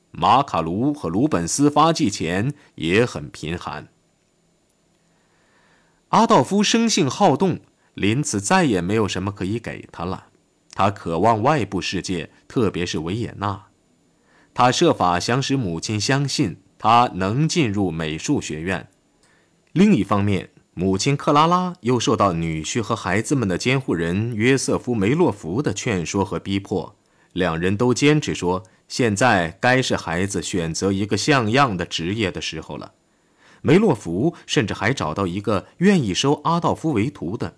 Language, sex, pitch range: Chinese, male, 95-145 Hz